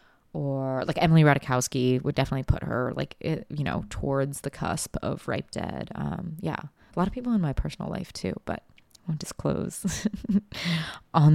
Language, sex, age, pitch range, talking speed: English, female, 20-39, 135-180 Hz, 180 wpm